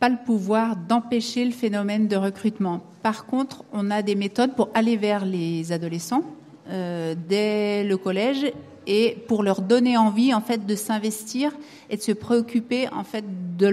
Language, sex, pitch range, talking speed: French, female, 195-230 Hz, 170 wpm